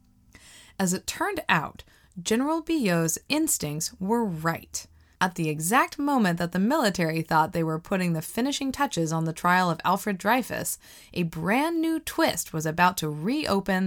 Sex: female